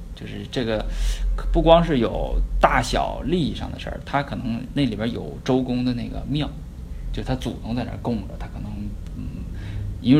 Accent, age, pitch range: native, 20-39, 85-115 Hz